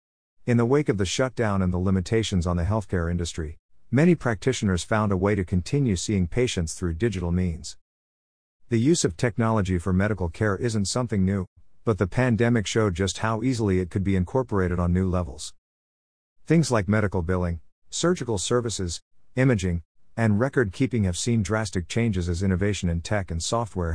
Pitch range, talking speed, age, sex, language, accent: 90-115 Hz, 170 wpm, 50-69, male, English, American